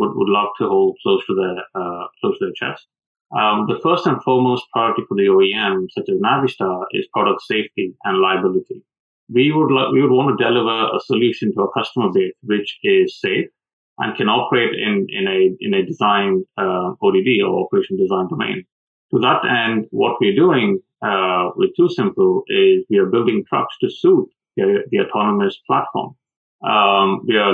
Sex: male